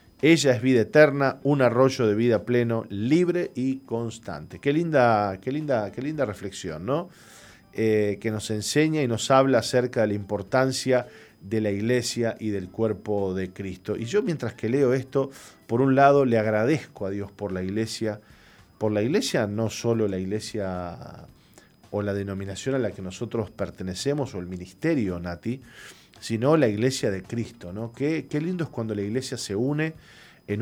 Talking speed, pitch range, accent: 175 wpm, 105-140 Hz, Argentinian